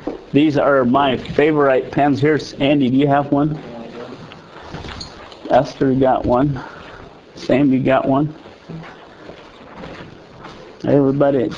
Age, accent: 50-69, American